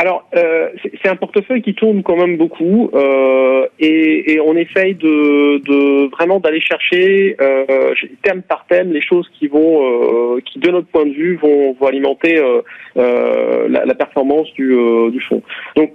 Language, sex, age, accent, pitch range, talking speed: French, male, 40-59, French, 130-170 Hz, 180 wpm